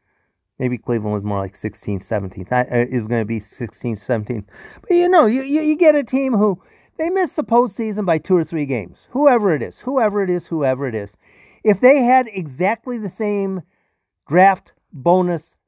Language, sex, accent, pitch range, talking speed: English, male, American, 120-205 Hz, 190 wpm